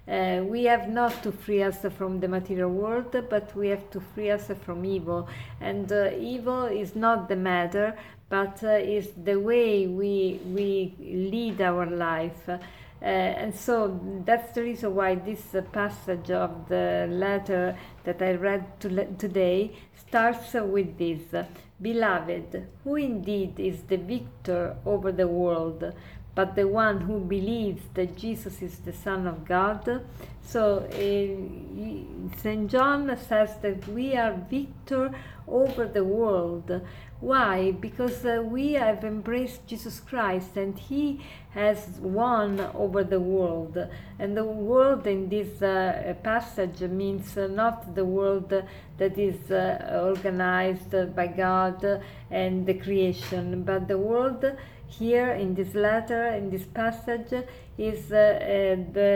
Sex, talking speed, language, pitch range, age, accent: female, 145 wpm, English, 185-220 Hz, 40-59, Italian